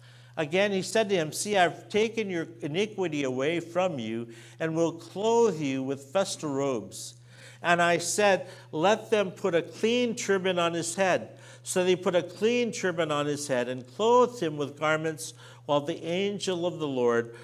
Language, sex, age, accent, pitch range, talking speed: English, male, 60-79, American, 120-185 Hz, 180 wpm